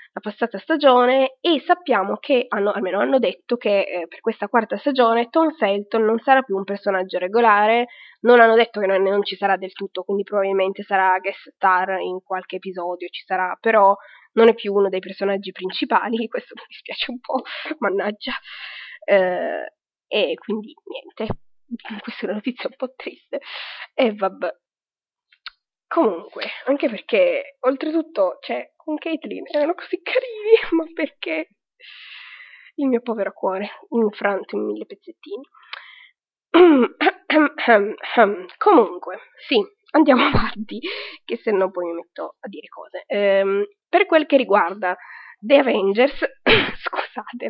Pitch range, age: 200-305 Hz, 20-39